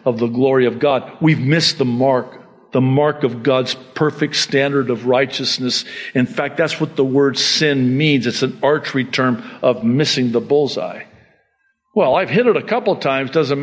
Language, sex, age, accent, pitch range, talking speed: English, male, 50-69, American, 125-205 Hz, 185 wpm